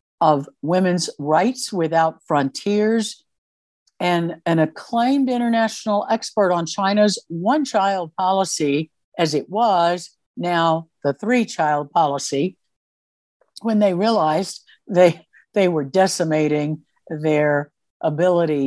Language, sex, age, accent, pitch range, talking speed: English, female, 60-79, American, 155-210 Hz, 105 wpm